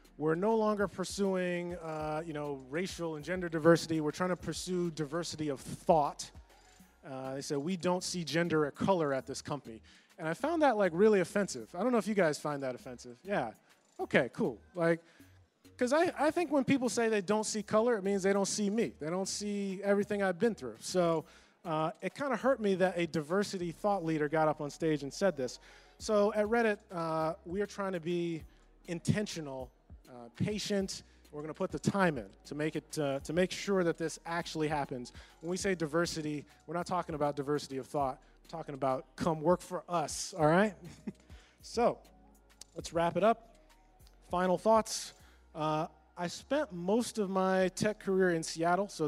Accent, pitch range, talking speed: American, 155-200 Hz, 200 wpm